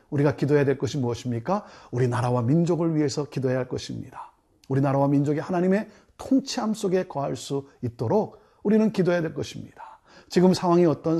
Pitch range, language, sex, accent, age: 140-215 Hz, Korean, male, native, 40-59